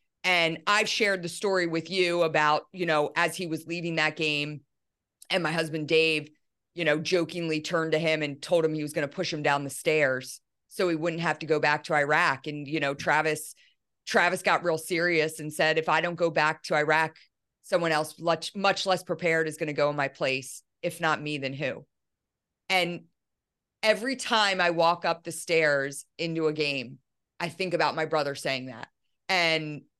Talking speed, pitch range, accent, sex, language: 200 wpm, 155-185 Hz, American, female, English